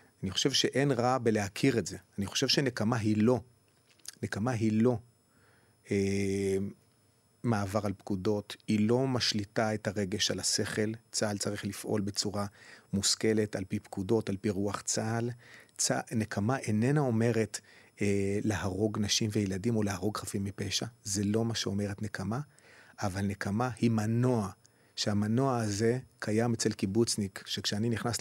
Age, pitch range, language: 30-49, 105-120 Hz, Hebrew